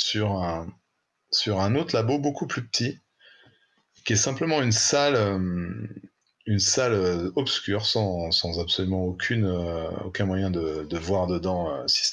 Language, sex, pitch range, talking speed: French, male, 90-105 Hz, 145 wpm